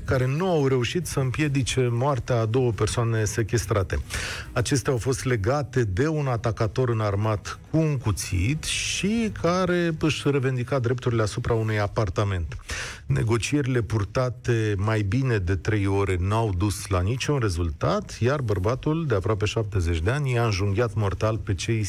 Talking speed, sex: 150 wpm, male